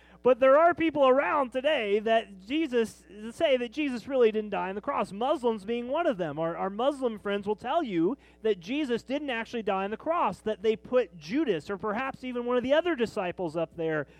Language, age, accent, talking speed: English, 30-49, American, 215 wpm